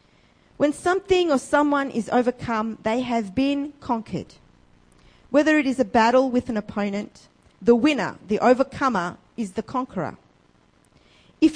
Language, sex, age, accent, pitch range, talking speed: English, female, 40-59, Australian, 190-275 Hz, 135 wpm